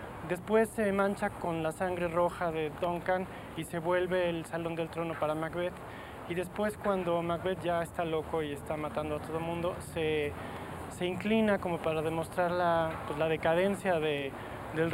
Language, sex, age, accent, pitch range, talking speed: Spanish, male, 30-49, Mexican, 170-210 Hz, 175 wpm